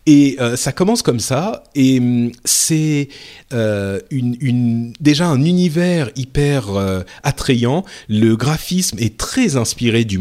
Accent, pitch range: French, 115-155 Hz